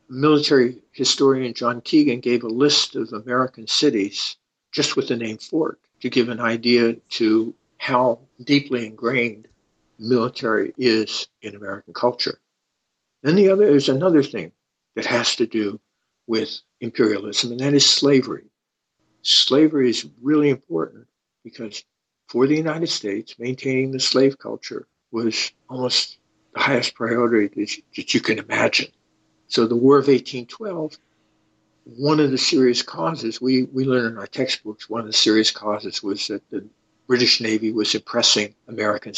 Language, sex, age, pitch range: English, male, 60-79, 110-135 Hz